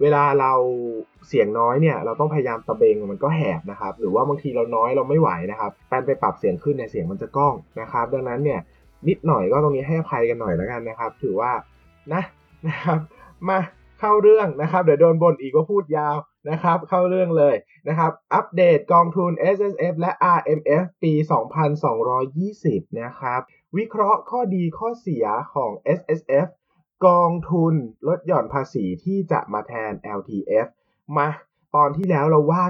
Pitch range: 135-185 Hz